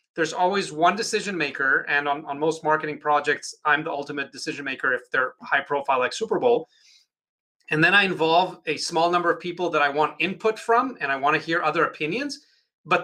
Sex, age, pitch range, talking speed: male, 30-49, 150-185 Hz, 200 wpm